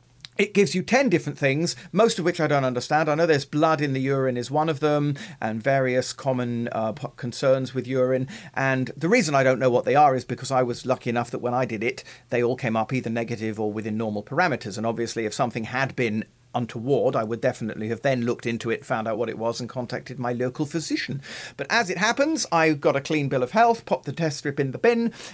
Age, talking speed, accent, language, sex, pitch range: 40-59, 245 wpm, British, English, male, 120-160 Hz